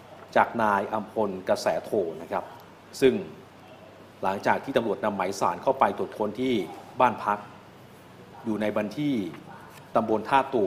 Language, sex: Thai, male